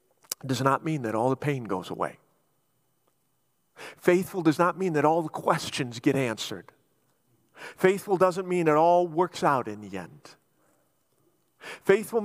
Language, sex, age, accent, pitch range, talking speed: English, male, 50-69, American, 140-195 Hz, 145 wpm